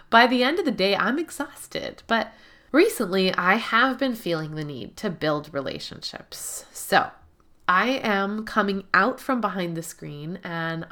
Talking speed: 160 wpm